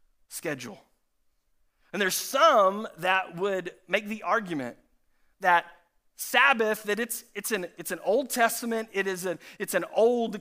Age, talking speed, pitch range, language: 40-59, 145 wpm, 180-230 Hz, English